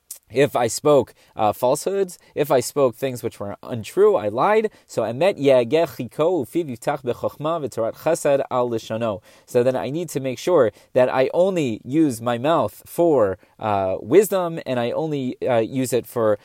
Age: 30-49